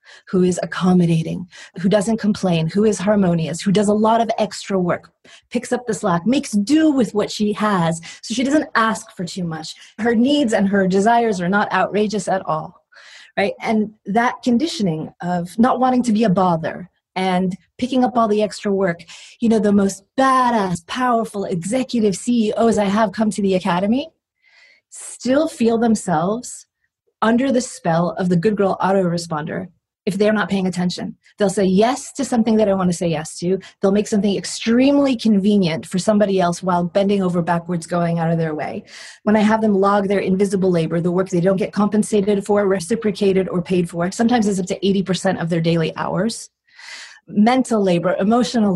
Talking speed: 185 wpm